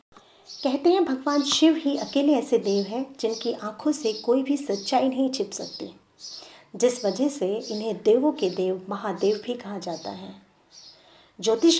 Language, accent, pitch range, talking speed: Hindi, native, 200-280 Hz, 160 wpm